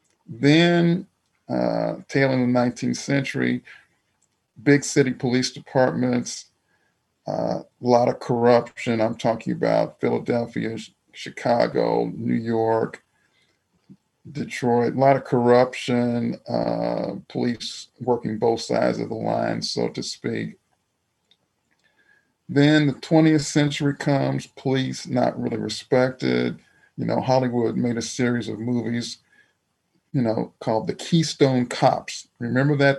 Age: 40-59